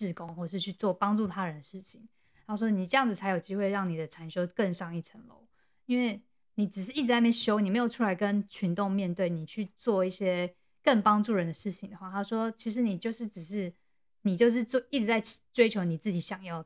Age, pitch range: 20-39, 180-220 Hz